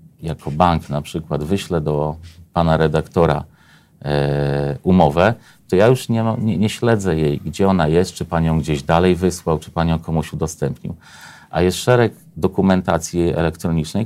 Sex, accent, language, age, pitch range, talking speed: male, native, Polish, 40-59, 80-100 Hz, 150 wpm